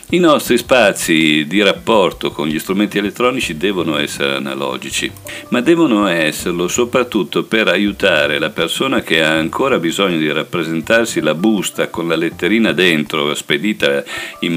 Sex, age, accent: male, 50-69, native